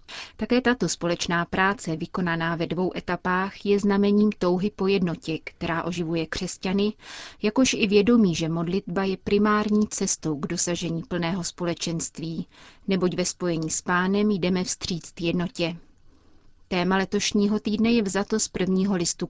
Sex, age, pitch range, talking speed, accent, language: female, 30-49, 175-205 Hz, 135 wpm, native, Czech